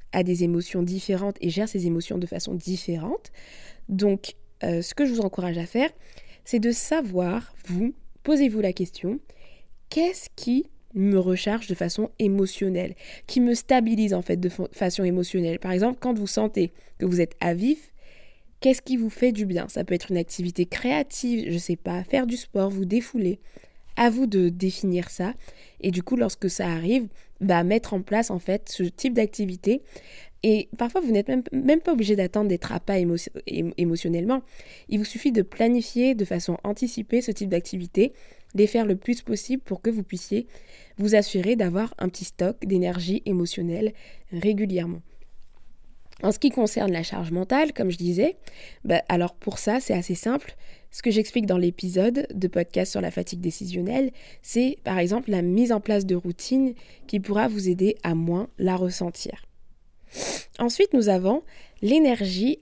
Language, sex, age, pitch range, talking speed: French, female, 20-39, 180-235 Hz, 180 wpm